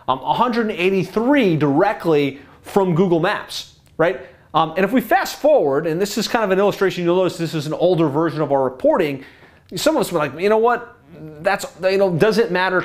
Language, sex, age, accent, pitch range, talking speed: English, male, 30-49, American, 155-200 Hz, 200 wpm